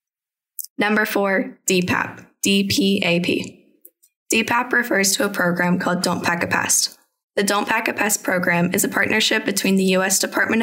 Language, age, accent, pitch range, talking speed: English, 10-29, American, 180-210 Hz, 150 wpm